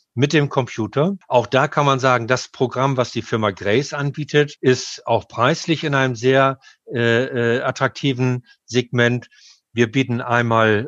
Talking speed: 155 wpm